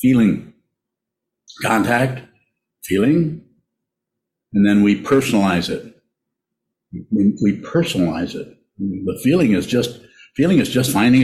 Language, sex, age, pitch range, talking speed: English, male, 60-79, 95-115 Hz, 110 wpm